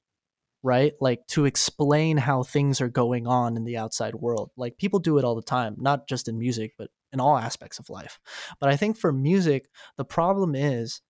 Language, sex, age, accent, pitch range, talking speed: English, male, 20-39, American, 125-165 Hz, 205 wpm